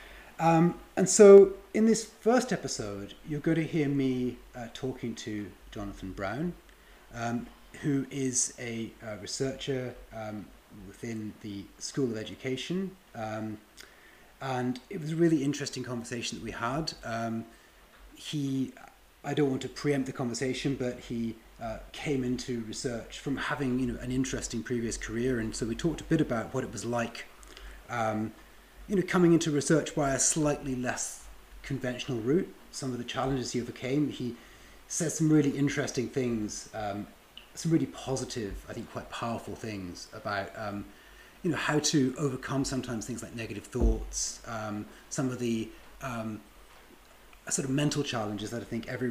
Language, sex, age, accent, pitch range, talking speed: English, male, 30-49, British, 115-145 Hz, 160 wpm